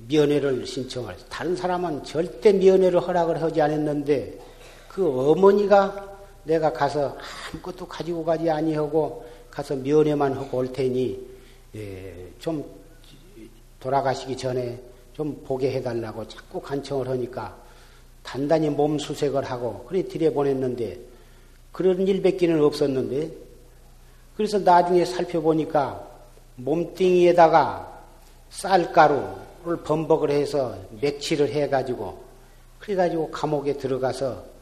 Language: Korean